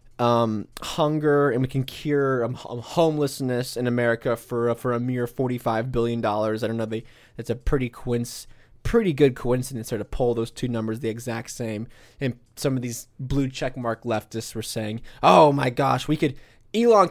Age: 20-39